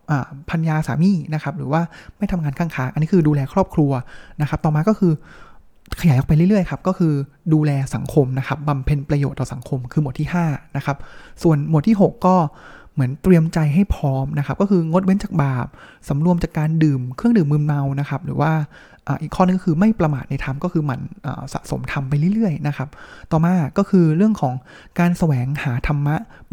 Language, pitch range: Thai, 140-180 Hz